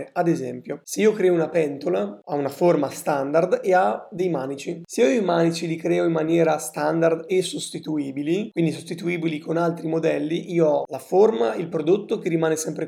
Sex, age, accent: male, 20-39, native